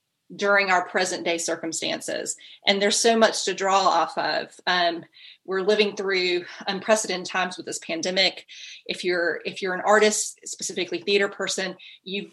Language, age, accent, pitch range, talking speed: English, 30-49, American, 185-215 Hz, 155 wpm